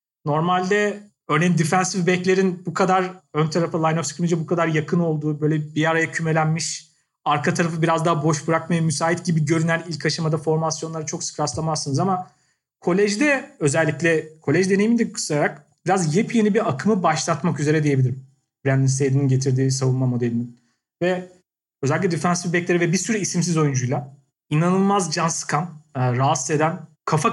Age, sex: 40-59, male